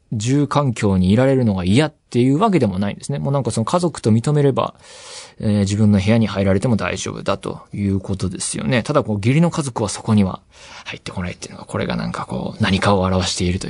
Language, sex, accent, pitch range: Japanese, male, native, 100-150 Hz